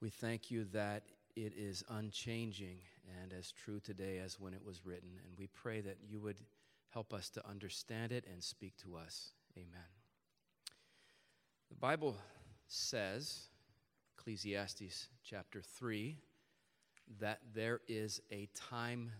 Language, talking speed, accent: English, 135 wpm, American